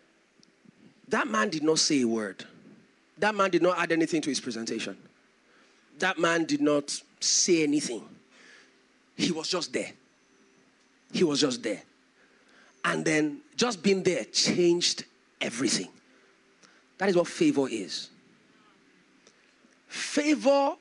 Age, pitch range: 40-59, 190-285 Hz